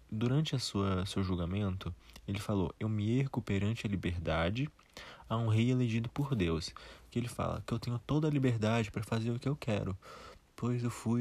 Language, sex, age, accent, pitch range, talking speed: Portuguese, male, 20-39, Brazilian, 95-130 Hz, 200 wpm